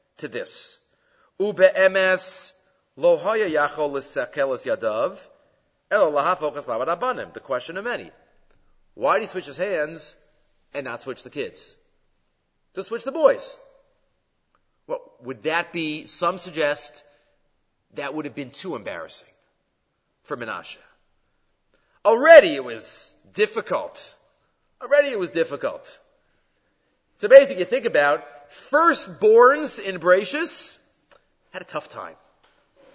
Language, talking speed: English, 100 wpm